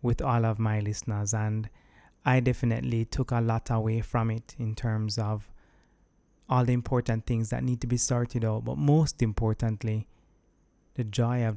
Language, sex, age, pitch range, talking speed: English, male, 20-39, 110-125 Hz, 170 wpm